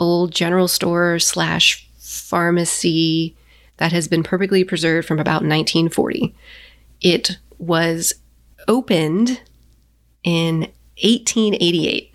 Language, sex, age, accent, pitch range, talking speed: English, female, 30-49, American, 160-190 Hz, 90 wpm